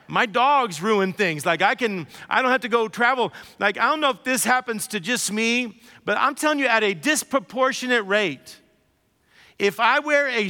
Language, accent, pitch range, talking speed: English, American, 210-260 Hz, 200 wpm